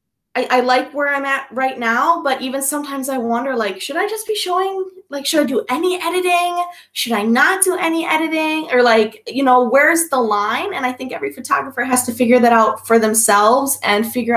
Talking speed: 215 wpm